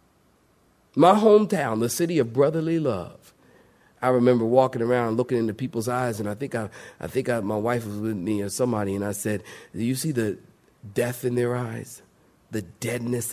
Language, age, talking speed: English, 40-59, 190 wpm